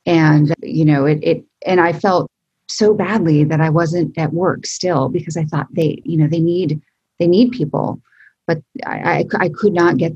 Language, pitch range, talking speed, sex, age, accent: English, 145-170 Hz, 200 wpm, female, 30-49, American